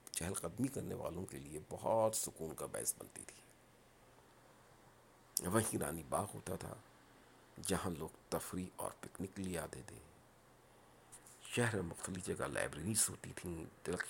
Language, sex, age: Urdu, male, 50-69